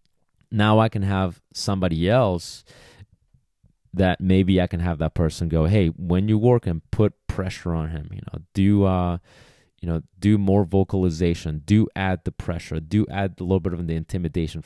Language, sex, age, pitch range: English, male, 30-49, 85-100 Hz